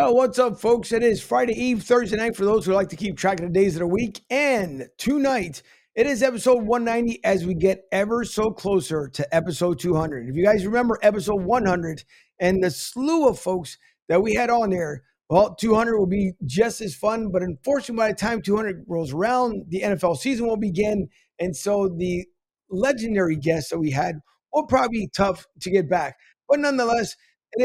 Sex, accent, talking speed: male, American, 195 wpm